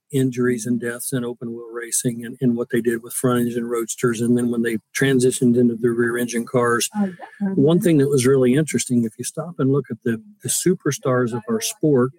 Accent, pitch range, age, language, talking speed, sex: American, 120-145 Hz, 50-69, English, 215 wpm, male